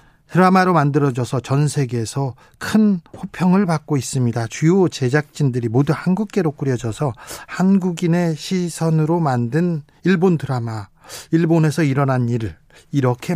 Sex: male